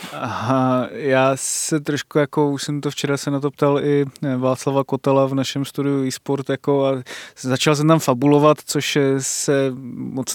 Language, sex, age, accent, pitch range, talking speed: Czech, male, 20-39, native, 130-145 Hz, 170 wpm